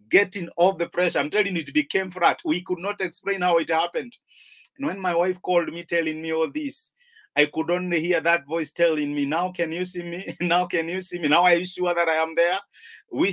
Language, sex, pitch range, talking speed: English, male, 175-220 Hz, 245 wpm